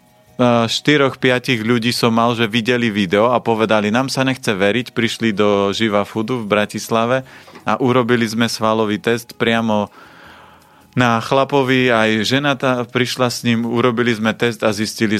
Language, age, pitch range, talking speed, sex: Slovak, 30-49, 105-125 Hz, 145 wpm, male